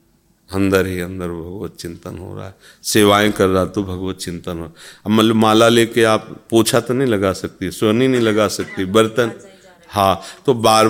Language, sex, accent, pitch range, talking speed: Hindi, male, native, 90-125 Hz, 175 wpm